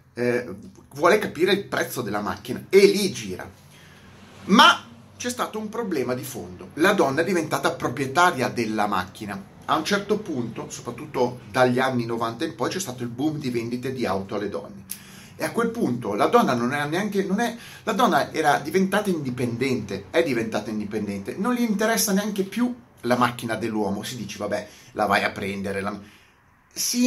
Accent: native